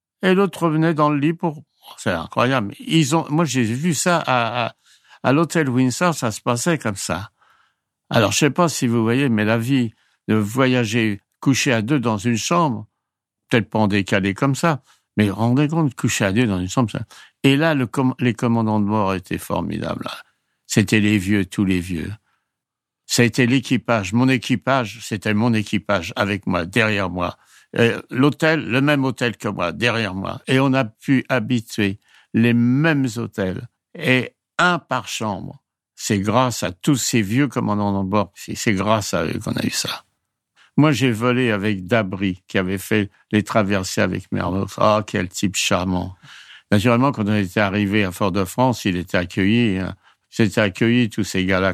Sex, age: male, 60-79